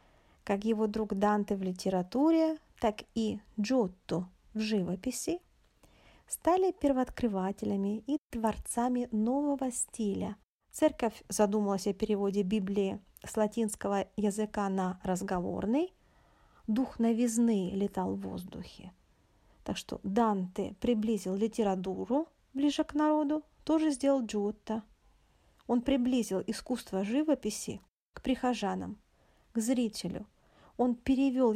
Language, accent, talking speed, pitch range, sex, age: Russian, native, 100 wpm, 200-260 Hz, female, 40-59